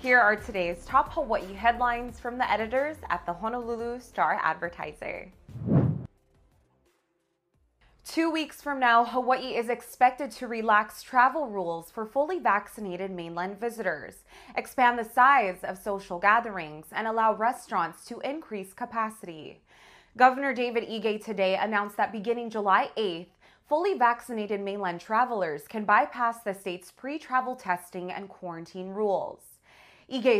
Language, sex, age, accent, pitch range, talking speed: English, female, 20-39, American, 195-250 Hz, 130 wpm